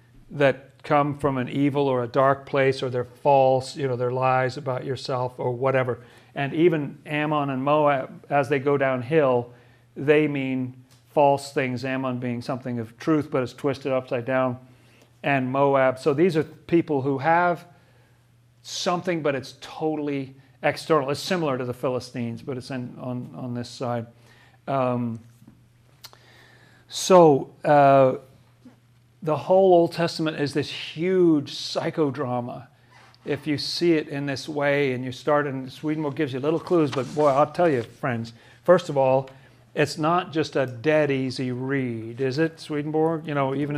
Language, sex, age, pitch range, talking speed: English, male, 40-59, 125-155 Hz, 160 wpm